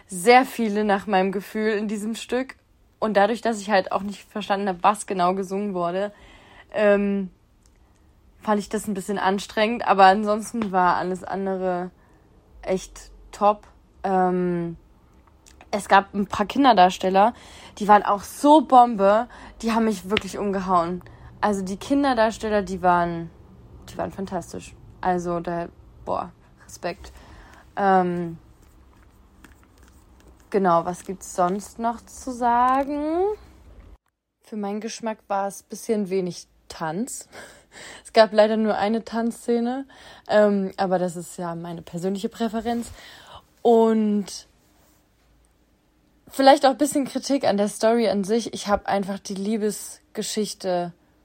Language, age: German, 20-39